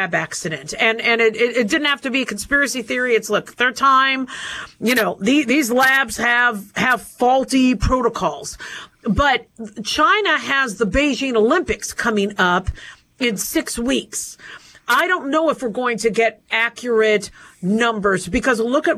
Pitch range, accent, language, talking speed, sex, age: 225-285 Hz, American, English, 155 wpm, female, 50-69